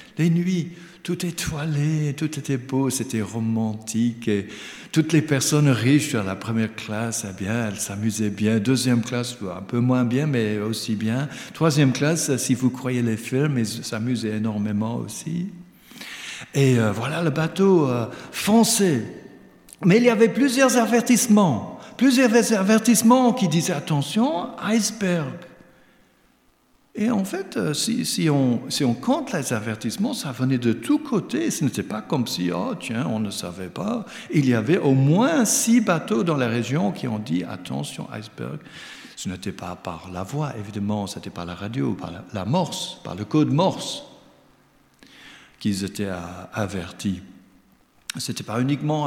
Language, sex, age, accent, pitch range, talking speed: French, male, 60-79, French, 110-180 Hz, 160 wpm